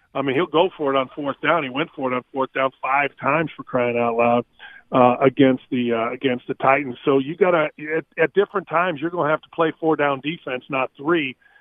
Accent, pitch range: American, 140-165 Hz